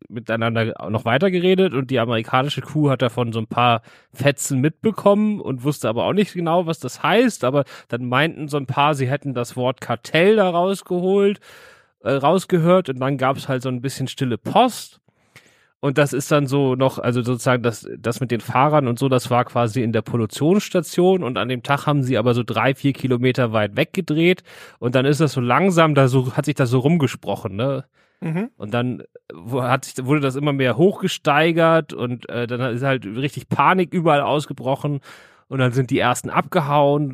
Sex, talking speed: male, 195 wpm